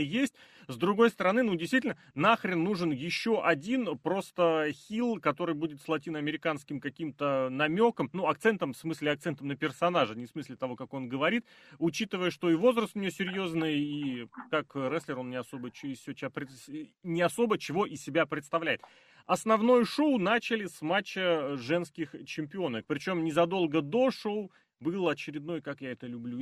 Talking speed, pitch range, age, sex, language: 160 wpm, 145-195 Hz, 30-49, male, Russian